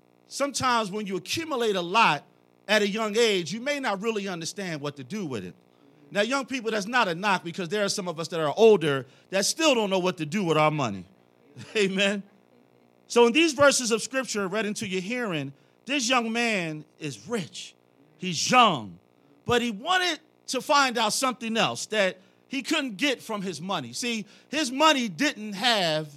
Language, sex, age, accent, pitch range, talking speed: English, male, 40-59, American, 185-275 Hz, 195 wpm